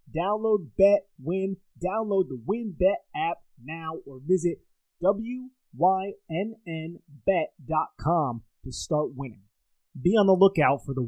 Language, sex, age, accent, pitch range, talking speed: English, male, 30-49, American, 125-190 Hz, 110 wpm